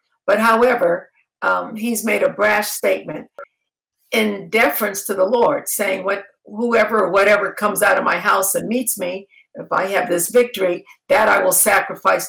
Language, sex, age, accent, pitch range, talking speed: English, female, 60-79, American, 200-250 Hz, 170 wpm